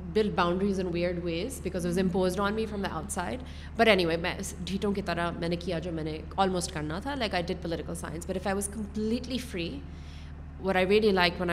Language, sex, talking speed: Urdu, female, 170 wpm